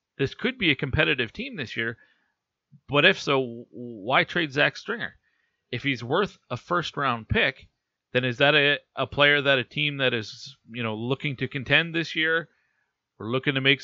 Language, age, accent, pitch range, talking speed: English, 30-49, American, 120-145 Hz, 185 wpm